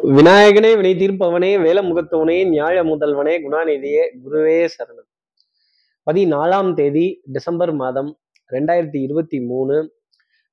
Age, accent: 20-39, native